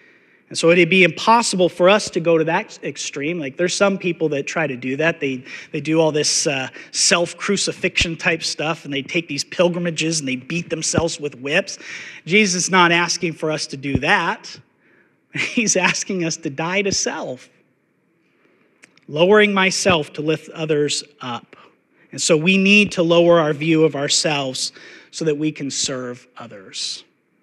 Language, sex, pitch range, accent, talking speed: English, male, 150-190 Hz, American, 175 wpm